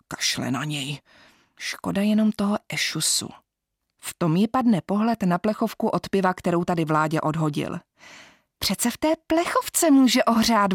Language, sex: Czech, female